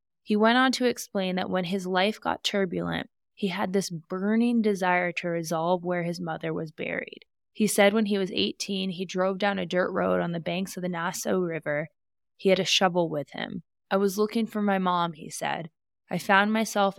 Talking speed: 210 wpm